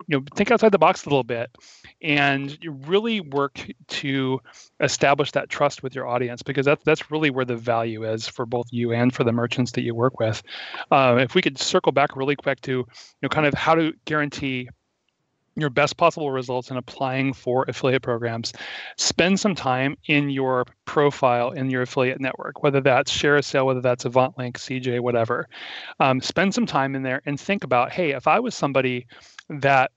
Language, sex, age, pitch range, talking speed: English, male, 30-49, 125-145 Hz, 195 wpm